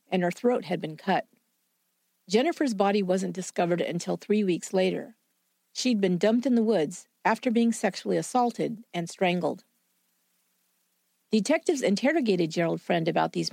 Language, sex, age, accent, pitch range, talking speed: English, female, 50-69, American, 175-245 Hz, 140 wpm